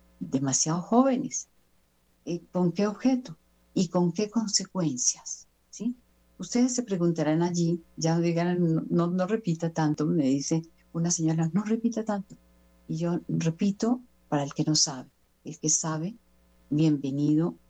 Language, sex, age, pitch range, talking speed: Spanish, female, 50-69, 135-180 Hz, 135 wpm